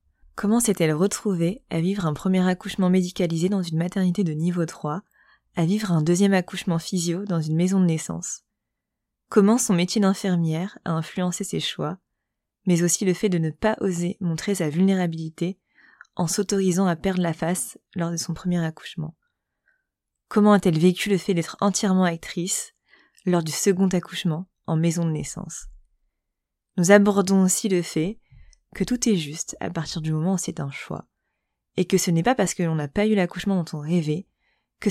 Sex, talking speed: female, 180 wpm